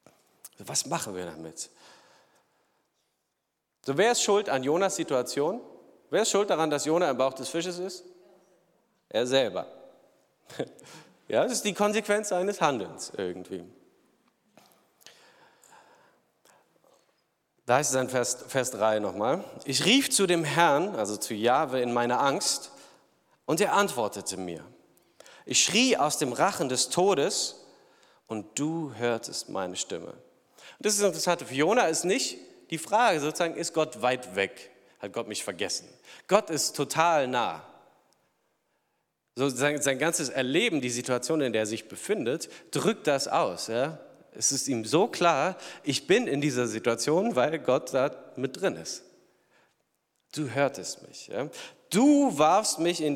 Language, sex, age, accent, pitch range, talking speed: German, male, 40-59, German, 125-180 Hz, 145 wpm